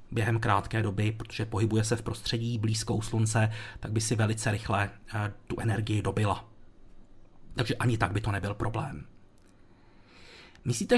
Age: 30-49